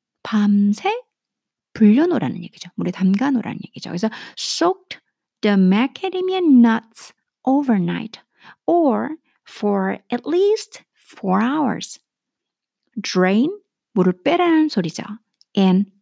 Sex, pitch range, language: female, 195-285 Hz, Korean